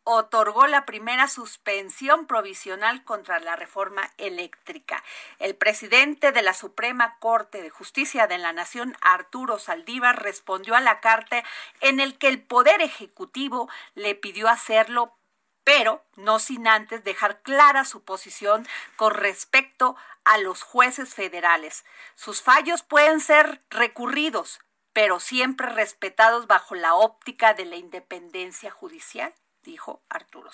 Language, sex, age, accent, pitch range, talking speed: Spanish, female, 40-59, Mexican, 215-285 Hz, 130 wpm